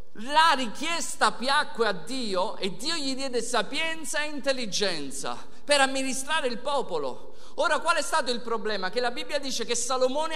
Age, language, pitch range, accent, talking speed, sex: 50-69, Italian, 250-305 Hz, native, 160 wpm, male